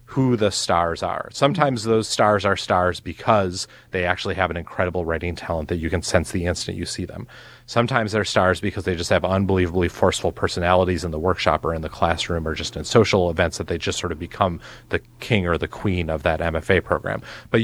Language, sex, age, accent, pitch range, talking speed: English, male, 30-49, American, 90-120 Hz, 220 wpm